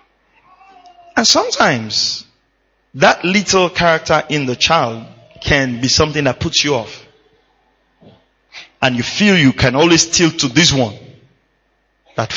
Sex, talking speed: male, 125 wpm